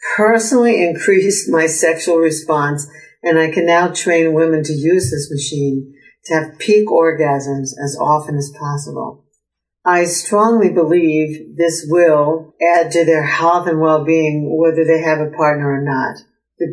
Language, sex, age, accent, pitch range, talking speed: English, female, 60-79, American, 145-160 Hz, 150 wpm